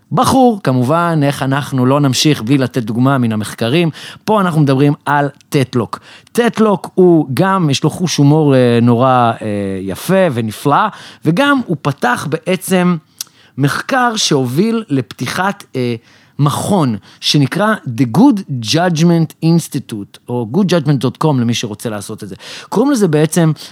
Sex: male